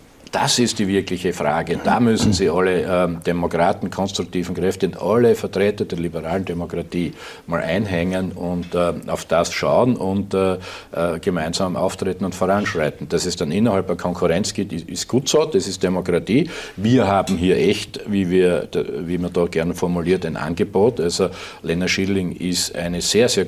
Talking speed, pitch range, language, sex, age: 165 wpm, 90-120 Hz, German, male, 50-69